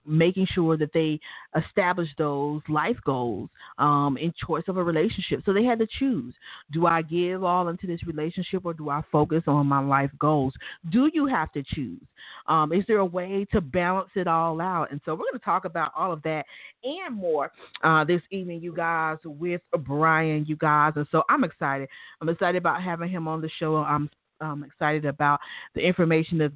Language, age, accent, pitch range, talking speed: English, 40-59, American, 150-195 Hz, 200 wpm